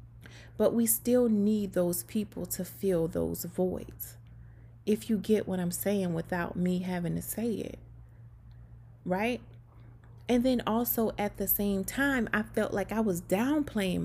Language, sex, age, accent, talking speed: English, female, 30-49, American, 155 wpm